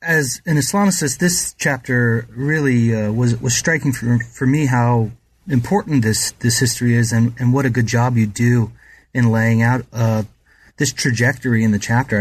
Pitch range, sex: 120-145 Hz, male